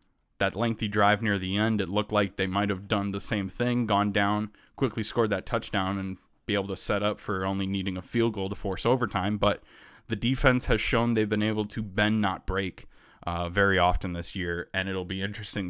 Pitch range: 95-115 Hz